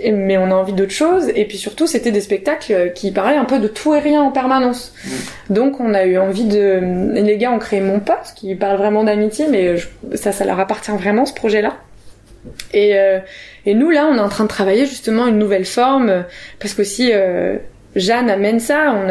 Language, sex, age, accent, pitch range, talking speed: French, female, 20-39, French, 195-240 Hz, 225 wpm